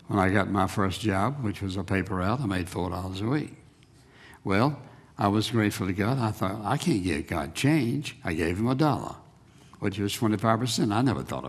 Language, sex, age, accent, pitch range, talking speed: English, male, 60-79, American, 95-120 Hz, 220 wpm